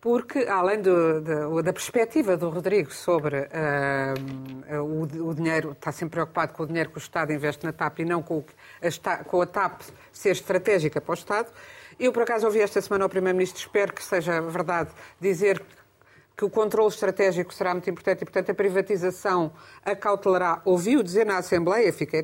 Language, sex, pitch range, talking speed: Portuguese, female, 165-225 Hz, 165 wpm